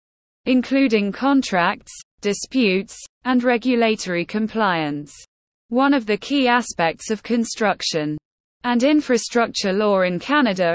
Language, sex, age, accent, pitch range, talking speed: English, female, 20-39, British, 185-245 Hz, 100 wpm